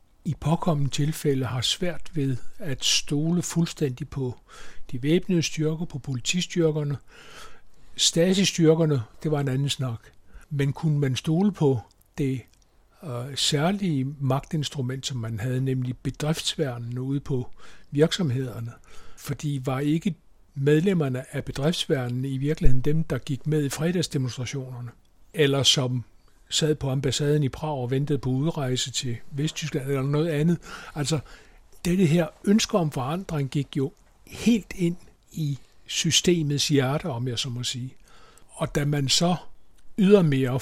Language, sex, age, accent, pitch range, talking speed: Danish, male, 60-79, native, 130-160 Hz, 135 wpm